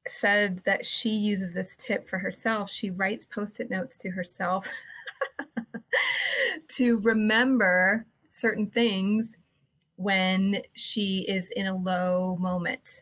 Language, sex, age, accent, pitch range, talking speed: English, female, 30-49, American, 190-240 Hz, 115 wpm